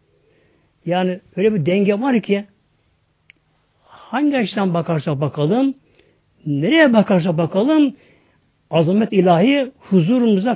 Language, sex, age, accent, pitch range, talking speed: Turkish, male, 60-79, native, 150-210 Hz, 90 wpm